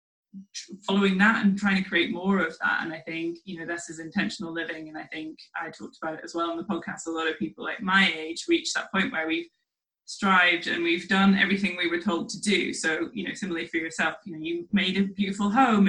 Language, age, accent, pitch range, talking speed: English, 20-39, British, 170-210 Hz, 245 wpm